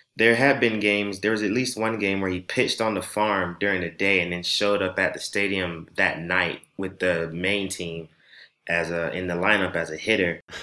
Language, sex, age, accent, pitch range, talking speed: English, male, 20-39, American, 90-105 Hz, 225 wpm